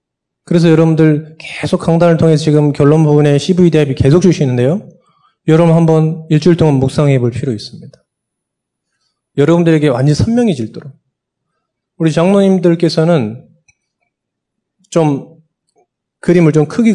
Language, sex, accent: Korean, male, native